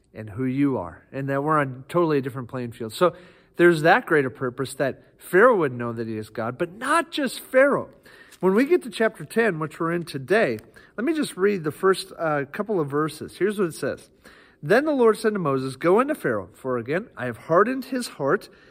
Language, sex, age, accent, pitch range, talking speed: English, male, 40-59, American, 135-220 Hz, 225 wpm